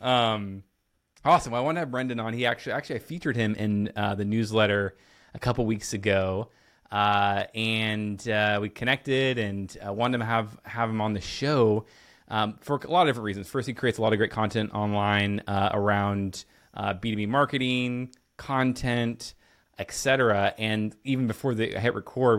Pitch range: 105-120 Hz